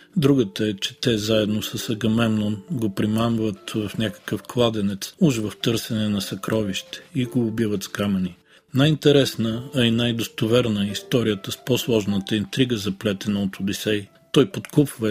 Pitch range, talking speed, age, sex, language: 110-130 Hz, 140 wpm, 40-59, male, Bulgarian